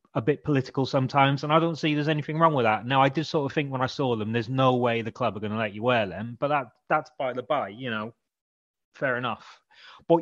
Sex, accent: male, British